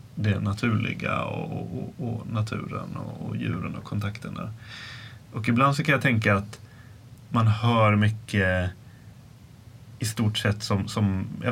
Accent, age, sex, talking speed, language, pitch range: Swedish, 30-49, male, 135 wpm, English, 105-120 Hz